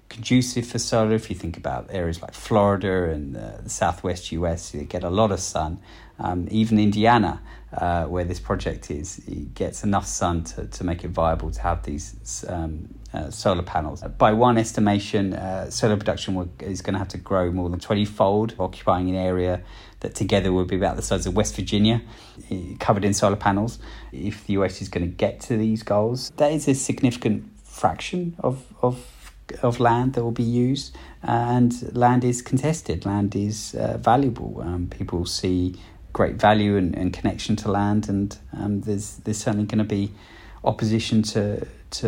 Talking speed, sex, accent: 185 wpm, male, British